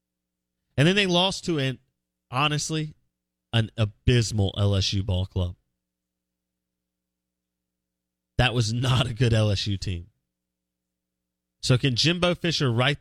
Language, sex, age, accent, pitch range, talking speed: English, male, 30-49, American, 95-140 Hz, 110 wpm